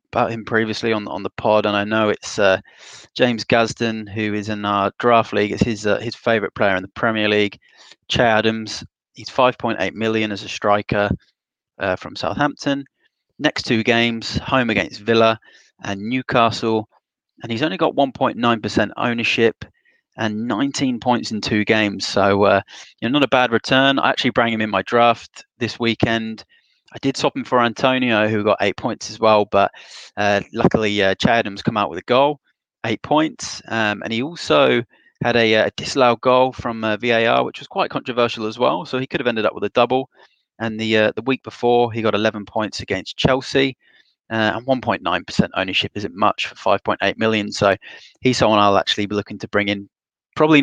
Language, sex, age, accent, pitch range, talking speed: English, male, 30-49, British, 105-120 Hz, 195 wpm